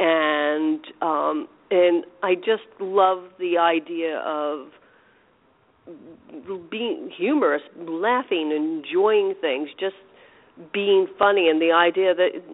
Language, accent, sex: English, American, female